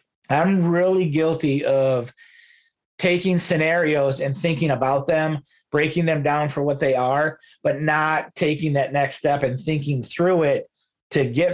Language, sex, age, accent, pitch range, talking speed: English, male, 30-49, American, 130-160 Hz, 150 wpm